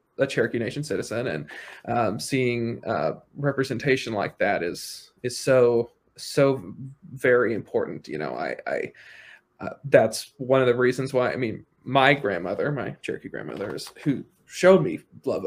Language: English